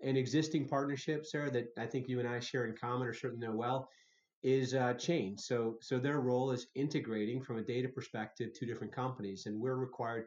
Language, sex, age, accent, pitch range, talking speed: English, male, 30-49, American, 110-130 Hz, 210 wpm